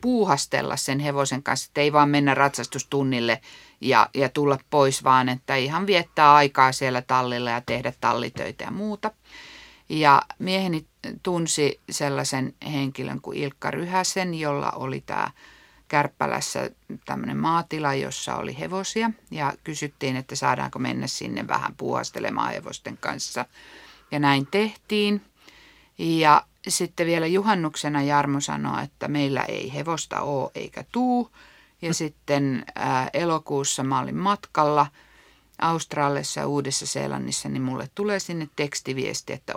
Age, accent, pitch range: 50-69, native, 135-175 Hz